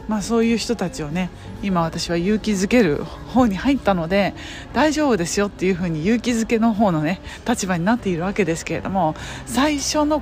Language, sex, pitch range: Japanese, female, 170-245 Hz